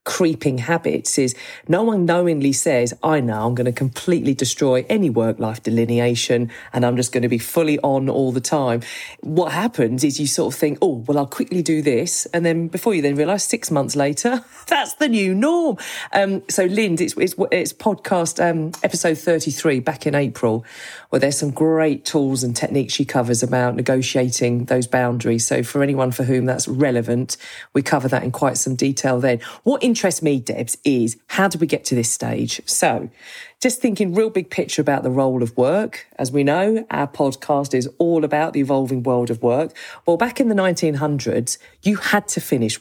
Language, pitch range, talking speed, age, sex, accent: English, 125-175 Hz, 200 wpm, 40-59, female, British